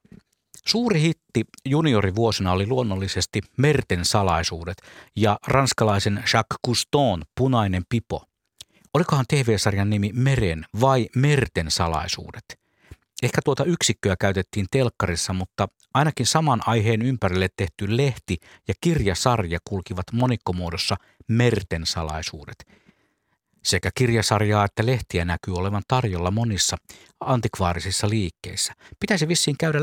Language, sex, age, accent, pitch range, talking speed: Finnish, male, 50-69, native, 95-125 Hz, 105 wpm